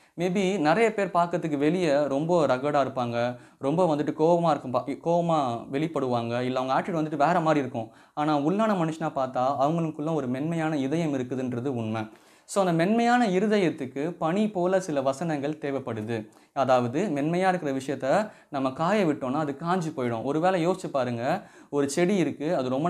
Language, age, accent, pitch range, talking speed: Tamil, 20-39, native, 130-170 Hz, 150 wpm